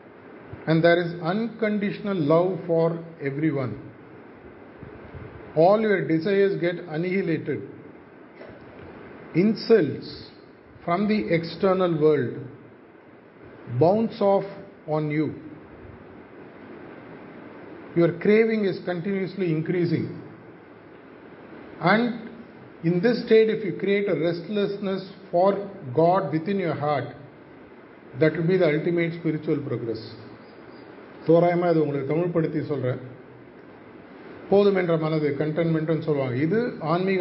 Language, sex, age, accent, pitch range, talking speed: Tamil, male, 50-69, native, 155-190 Hz, 95 wpm